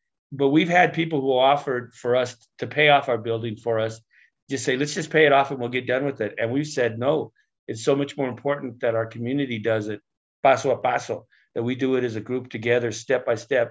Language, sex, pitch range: English, male, 115-135 Hz